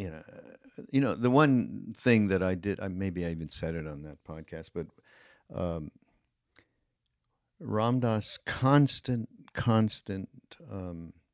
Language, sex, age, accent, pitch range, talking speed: English, male, 60-79, American, 85-110 Hz, 130 wpm